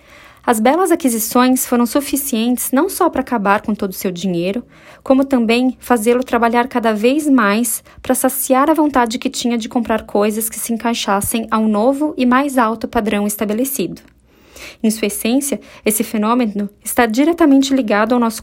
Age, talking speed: 20-39, 165 wpm